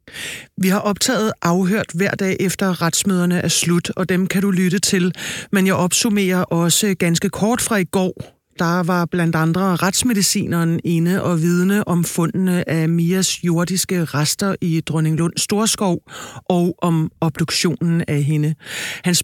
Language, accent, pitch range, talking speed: Danish, native, 165-195 Hz, 155 wpm